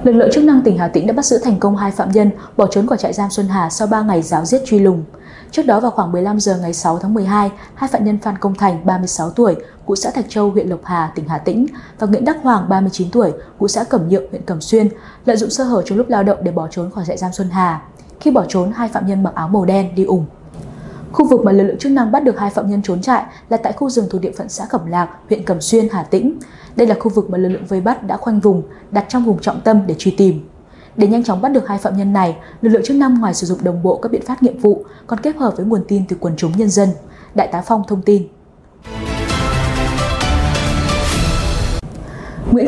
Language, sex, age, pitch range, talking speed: Vietnamese, female, 20-39, 185-235 Hz, 265 wpm